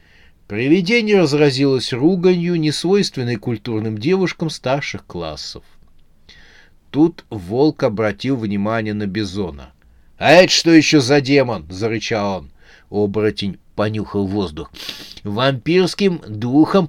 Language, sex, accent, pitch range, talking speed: Russian, male, native, 100-150 Hz, 95 wpm